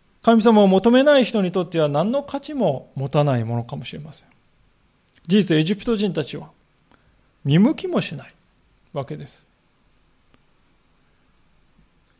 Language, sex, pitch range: Japanese, male, 140-205 Hz